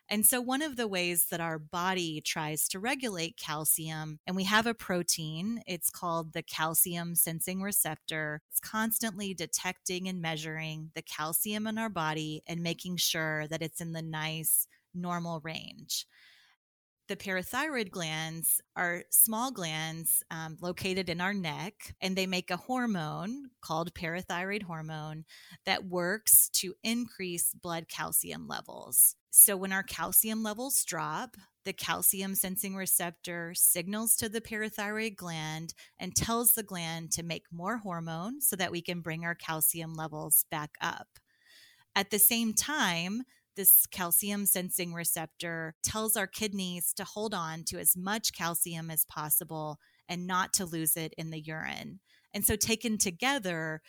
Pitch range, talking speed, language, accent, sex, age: 160-205 Hz, 150 wpm, English, American, female, 30-49